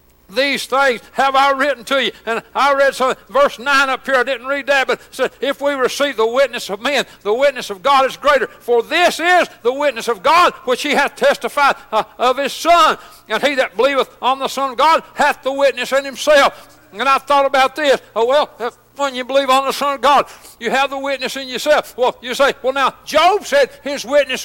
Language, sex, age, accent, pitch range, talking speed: English, male, 60-79, American, 260-295 Hz, 230 wpm